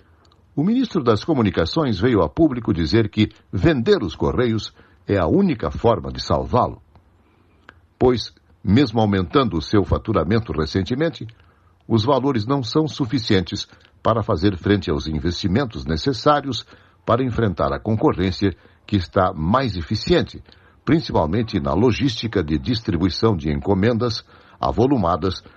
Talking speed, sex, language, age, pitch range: 120 wpm, male, Portuguese, 60-79, 85-115 Hz